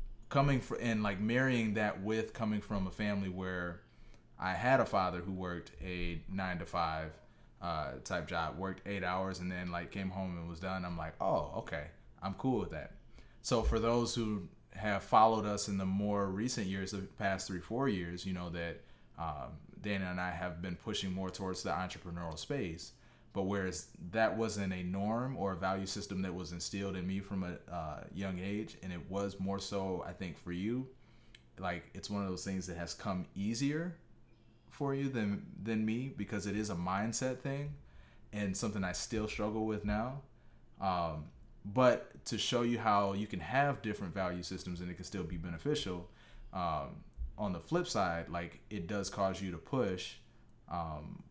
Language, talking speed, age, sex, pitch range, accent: English, 190 wpm, 30-49, male, 90-110 Hz, American